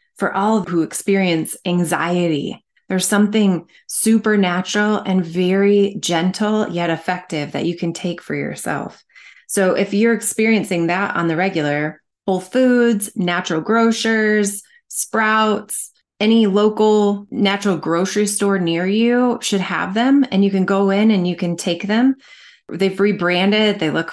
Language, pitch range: English, 180-215 Hz